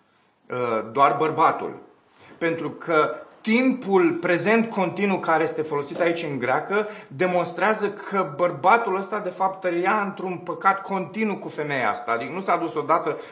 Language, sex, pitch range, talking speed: Romanian, male, 140-185 Hz, 140 wpm